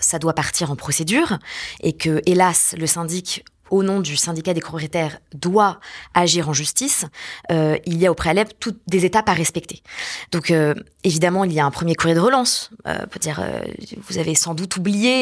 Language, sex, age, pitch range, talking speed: French, female, 20-39, 155-200 Hz, 200 wpm